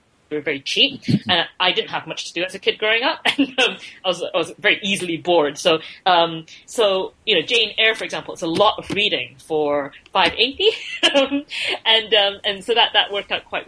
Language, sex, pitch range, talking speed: English, female, 155-210 Hz, 215 wpm